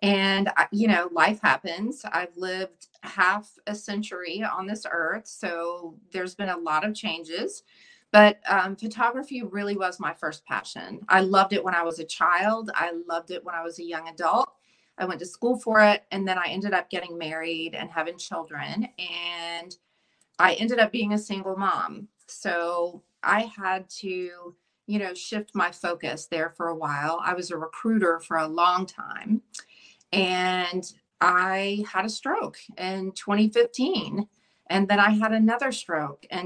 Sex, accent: female, American